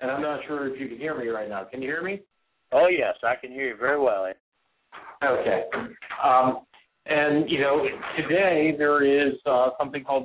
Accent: American